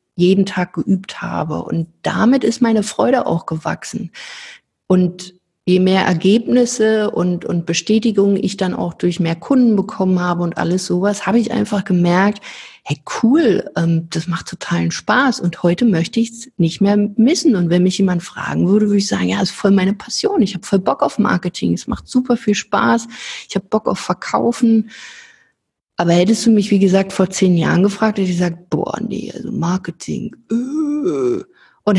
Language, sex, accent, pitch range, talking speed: German, female, German, 180-225 Hz, 180 wpm